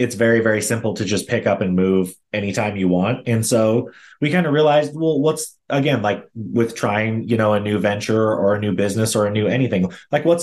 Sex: male